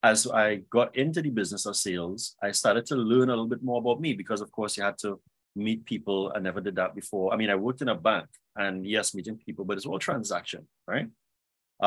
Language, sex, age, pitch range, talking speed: English, male, 30-49, 95-125 Hz, 240 wpm